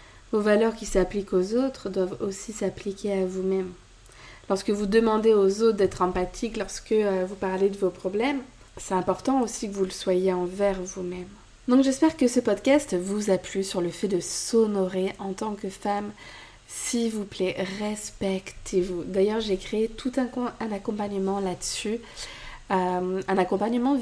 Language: French